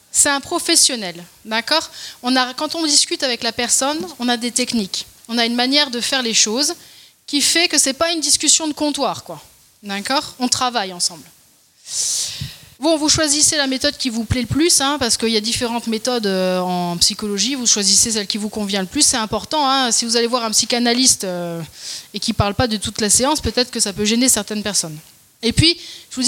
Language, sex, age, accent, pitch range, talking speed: French, female, 30-49, French, 225-295 Hz, 220 wpm